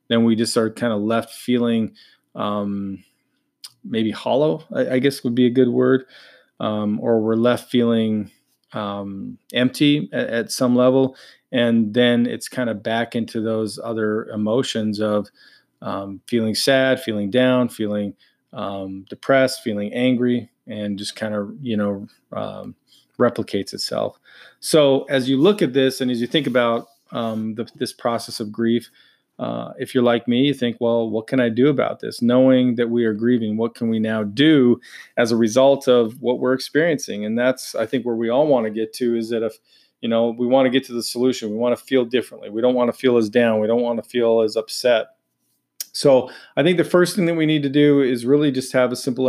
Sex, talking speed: male, 205 wpm